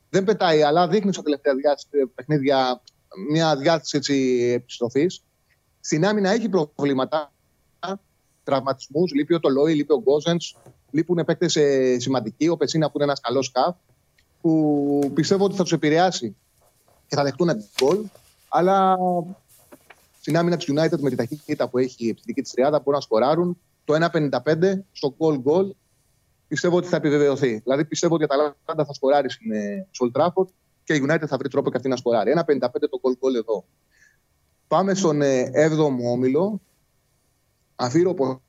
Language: Greek